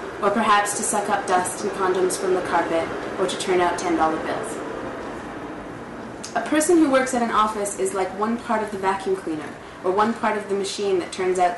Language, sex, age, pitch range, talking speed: English, female, 30-49, 180-225 Hz, 210 wpm